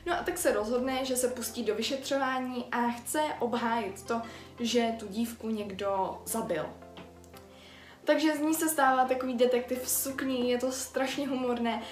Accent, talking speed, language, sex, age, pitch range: native, 160 wpm, Czech, female, 20-39, 215-250 Hz